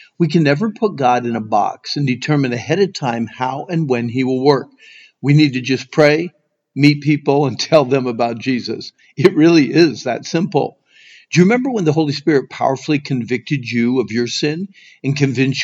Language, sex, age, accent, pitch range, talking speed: English, male, 50-69, American, 130-165 Hz, 195 wpm